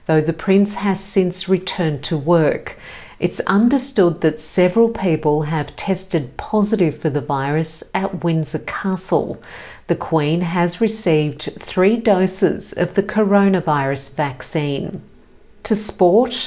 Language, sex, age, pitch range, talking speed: English, female, 50-69, 160-200 Hz, 125 wpm